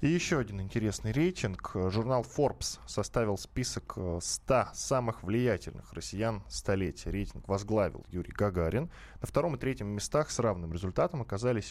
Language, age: Russian, 10-29